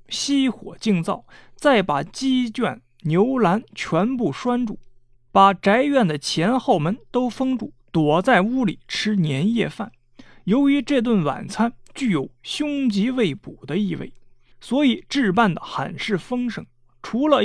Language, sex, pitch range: Chinese, male, 165-250 Hz